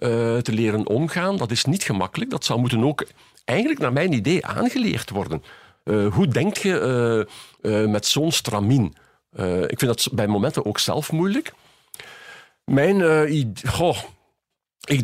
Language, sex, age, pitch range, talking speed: Dutch, male, 50-69, 95-125 Hz, 160 wpm